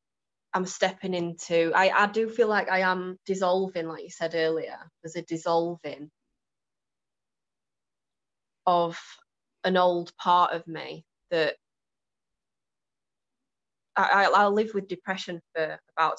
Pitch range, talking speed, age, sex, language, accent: 160-185 Hz, 120 wpm, 20-39, female, English, British